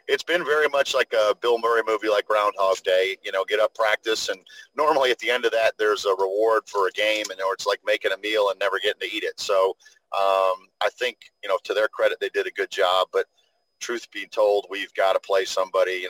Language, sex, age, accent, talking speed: English, male, 40-59, American, 245 wpm